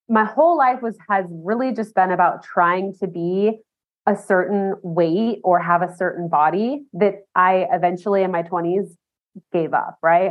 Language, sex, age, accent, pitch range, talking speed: English, female, 20-39, American, 175-205 Hz, 170 wpm